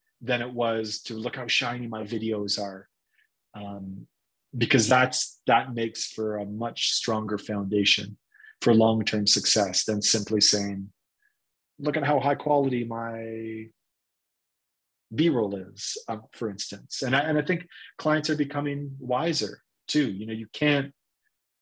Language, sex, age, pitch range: English, male, 30-49, 105-135 Hz